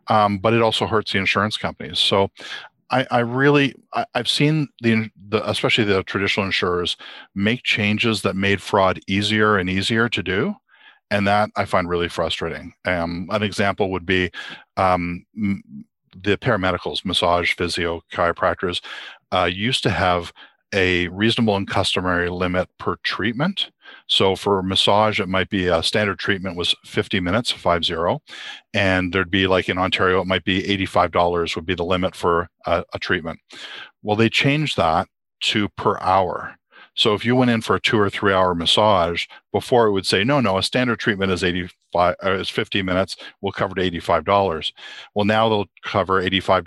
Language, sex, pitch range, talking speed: English, male, 90-105 Hz, 170 wpm